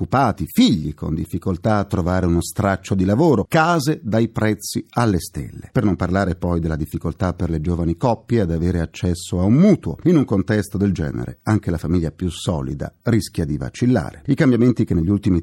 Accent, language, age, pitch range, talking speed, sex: native, Italian, 40-59, 85-115 Hz, 190 wpm, male